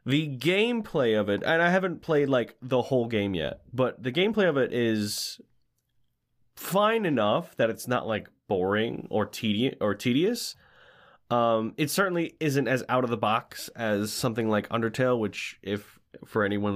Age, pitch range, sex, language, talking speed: 20-39, 105-150 Hz, male, English, 170 wpm